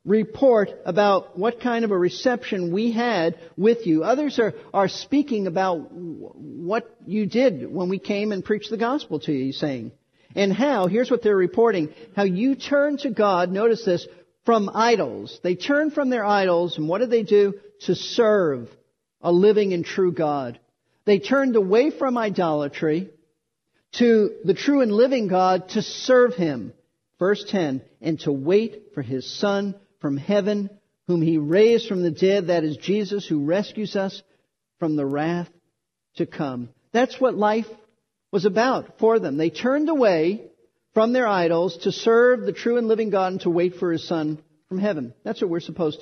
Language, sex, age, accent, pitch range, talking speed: English, male, 50-69, American, 175-230 Hz, 175 wpm